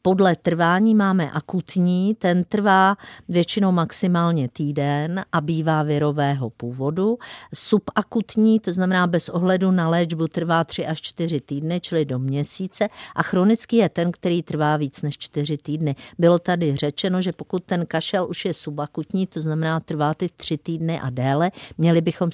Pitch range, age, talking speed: 155-190 Hz, 50-69, 155 wpm